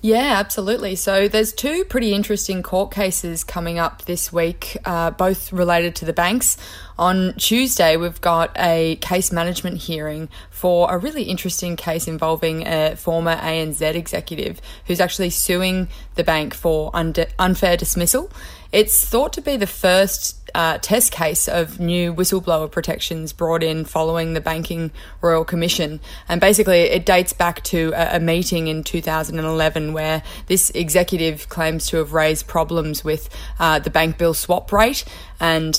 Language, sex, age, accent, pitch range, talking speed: English, female, 20-39, Australian, 160-180 Hz, 155 wpm